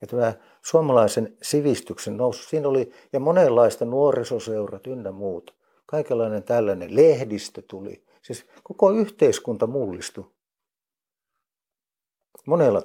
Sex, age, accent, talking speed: male, 60-79, native, 90 wpm